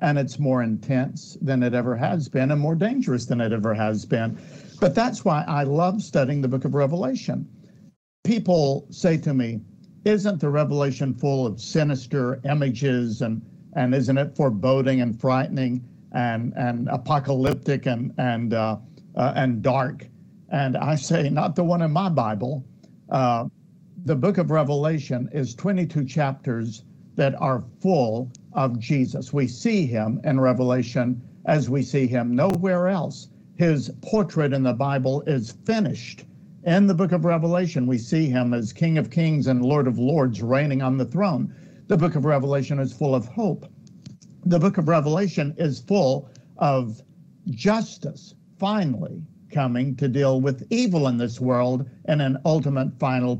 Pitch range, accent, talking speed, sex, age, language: 130-175 Hz, American, 160 wpm, male, 60-79, English